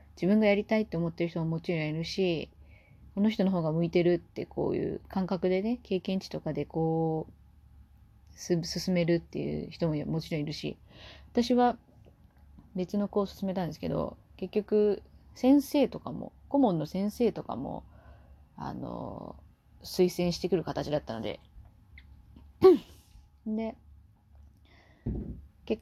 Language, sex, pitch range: Japanese, female, 150-210 Hz